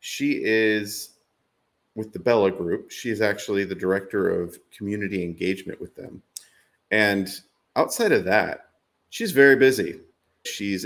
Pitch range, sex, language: 95-115 Hz, male, English